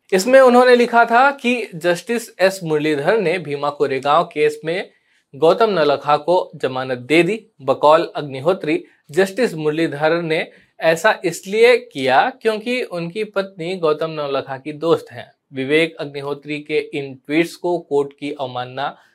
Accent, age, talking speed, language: native, 20-39, 130 wpm, Hindi